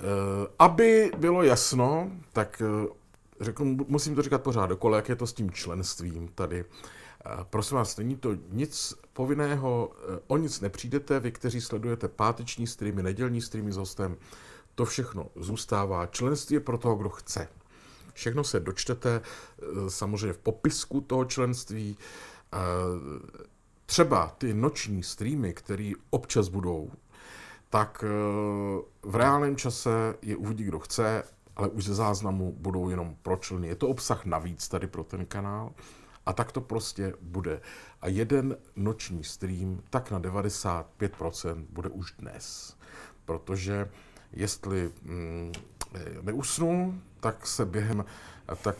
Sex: male